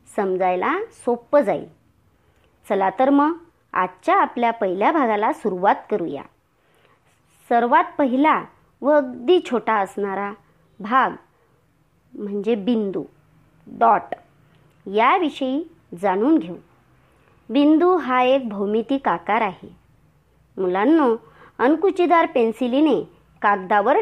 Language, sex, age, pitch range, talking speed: Marathi, male, 40-59, 205-290 Hz, 85 wpm